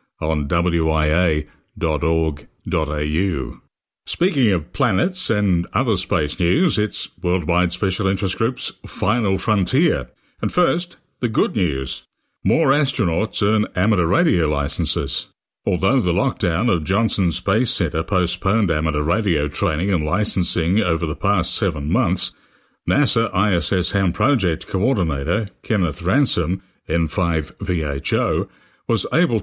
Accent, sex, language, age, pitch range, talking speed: British, male, English, 60-79, 85-110 Hz, 110 wpm